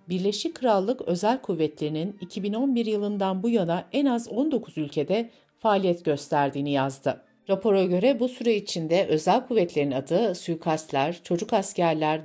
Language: Turkish